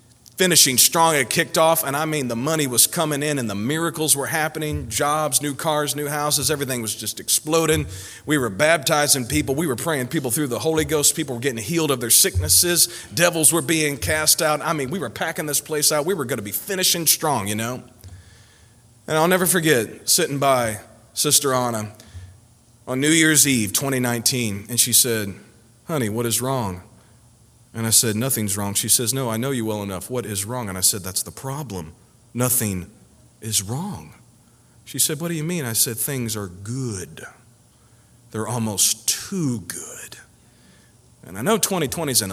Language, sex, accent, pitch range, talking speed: English, male, American, 110-150 Hz, 190 wpm